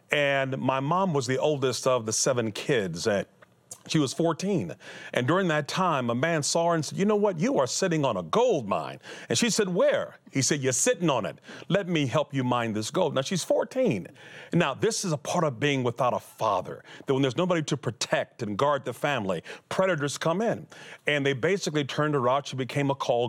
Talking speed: 220 wpm